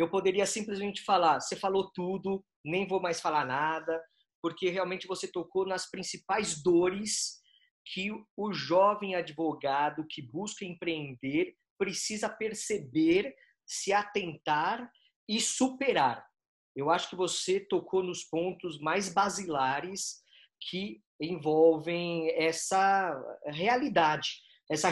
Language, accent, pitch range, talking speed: Portuguese, Brazilian, 170-225 Hz, 110 wpm